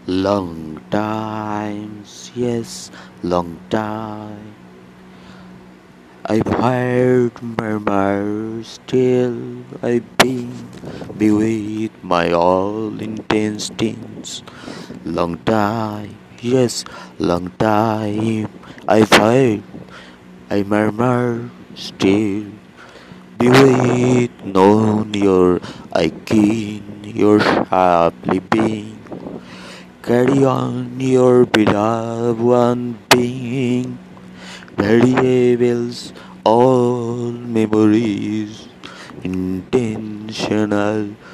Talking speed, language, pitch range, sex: 70 wpm, Bengali, 100-120 Hz, male